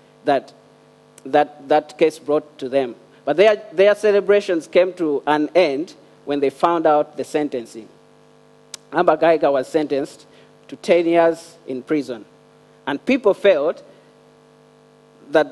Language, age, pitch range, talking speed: English, 40-59, 145-185 Hz, 130 wpm